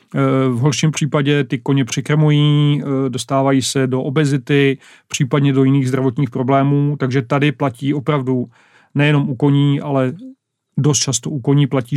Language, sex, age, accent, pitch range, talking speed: Czech, male, 40-59, native, 135-150 Hz, 135 wpm